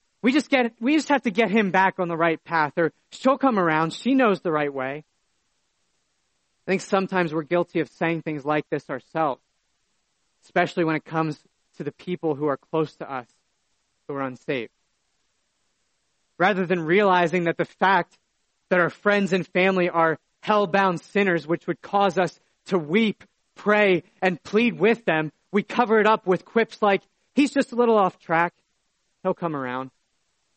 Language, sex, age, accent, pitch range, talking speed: English, male, 30-49, American, 155-200 Hz, 175 wpm